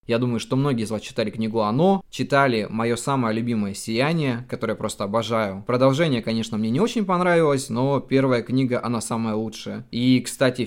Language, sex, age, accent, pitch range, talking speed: Russian, male, 20-39, native, 110-130 Hz, 180 wpm